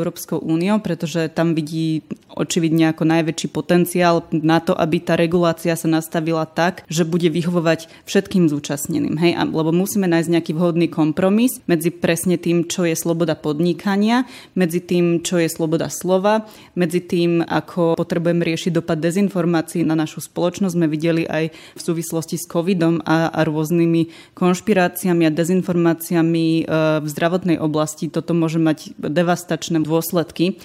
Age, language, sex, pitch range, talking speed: 20-39, Slovak, female, 165-180 Hz, 145 wpm